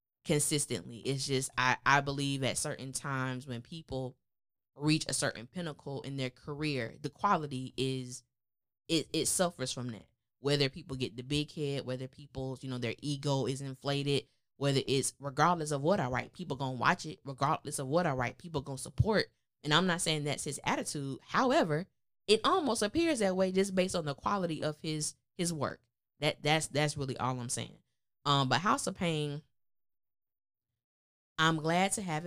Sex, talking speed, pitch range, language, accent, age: female, 180 wpm, 130-155 Hz, English, American, 10-29